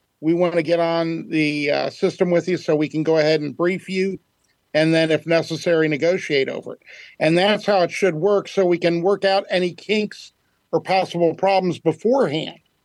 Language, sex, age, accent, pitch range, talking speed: English, male, 50-69, American, 160-190 Hz, 195 wpm